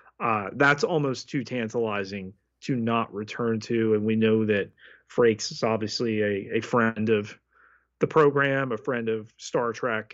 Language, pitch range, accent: English, 110-130 Hz, American